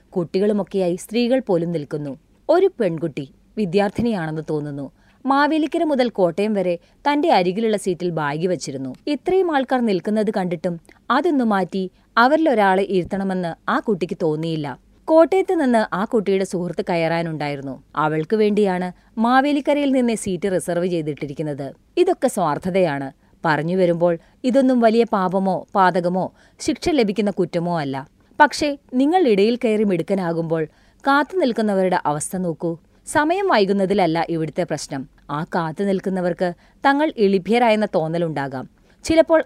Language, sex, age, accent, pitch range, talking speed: Malayalam, female, 30-49, native, 170-240 Hz, 105 wpm